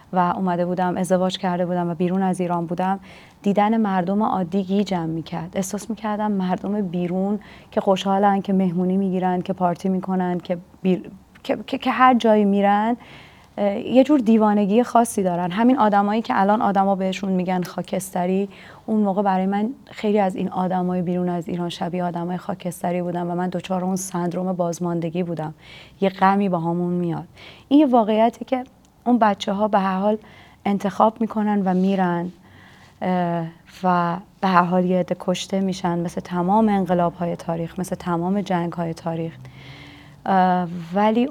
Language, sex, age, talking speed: English, female, 30-49, 160 wpm